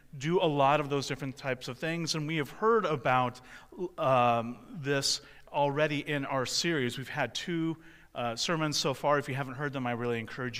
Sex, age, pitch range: male, 30-49, 125-150 Hz